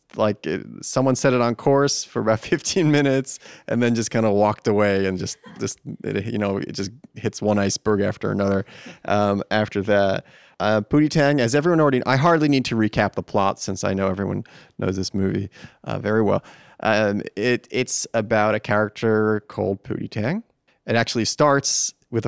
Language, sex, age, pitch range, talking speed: English, male, 30-49, 105-130 Hz, 185 wpm